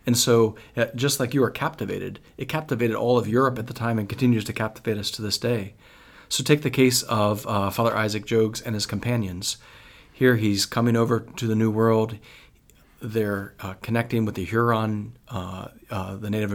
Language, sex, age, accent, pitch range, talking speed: English, male, 40-59, American, 105-120 Hz, 190 wpm